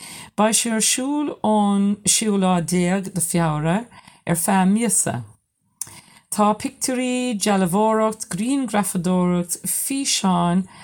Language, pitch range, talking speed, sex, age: English, 165-210 Hz, 90 wpm, female, 50-69